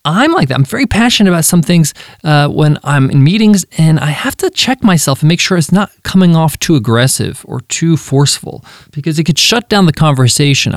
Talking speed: 215 wpm